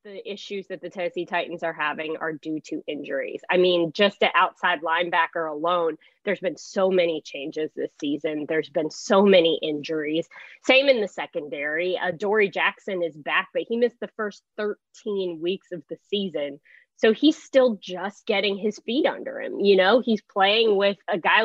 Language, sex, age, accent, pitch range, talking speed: English, female, 20-39, American, 175-230 Hz, 185 wpm